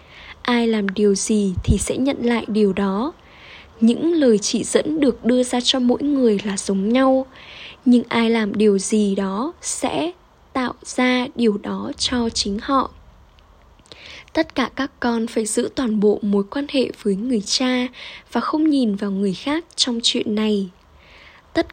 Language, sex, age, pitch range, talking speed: Vietnamese, female, 10-29, 210-260 Hz, 170 wpm